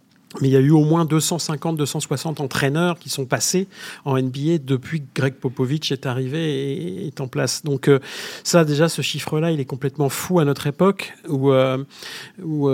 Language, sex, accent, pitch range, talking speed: French, male, French, 125-145 Hz, 185 wpm